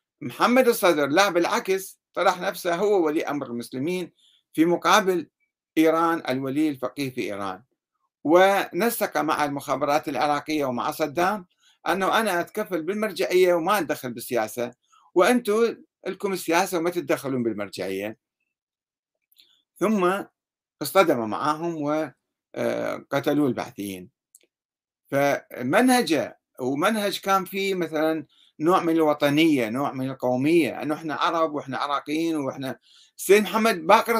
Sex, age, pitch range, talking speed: male, 60-79, 145-195 Hz, 110 wpm